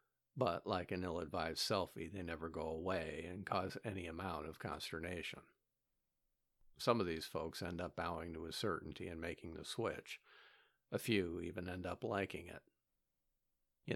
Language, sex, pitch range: English, male, 75-95 Hz